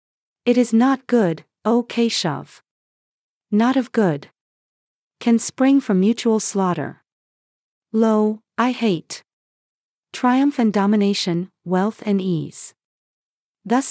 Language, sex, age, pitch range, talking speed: English, female, 40-59, 190-240 Hz, 105 wpm